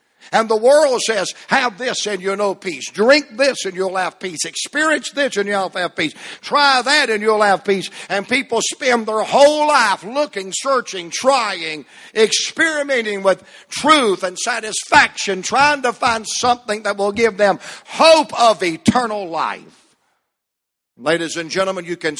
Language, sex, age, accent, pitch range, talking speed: English, male, 60-79, American, 145-220 Hz, 160 wpm